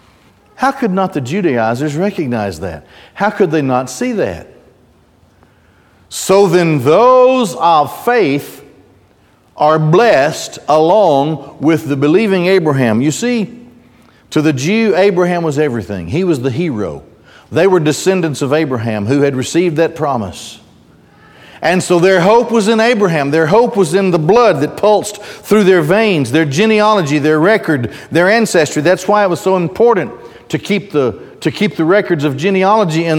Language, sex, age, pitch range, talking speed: English, male, 50-69, 120-190 Hz, 155 wpm